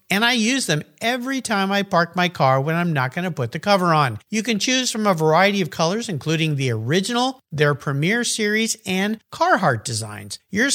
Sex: male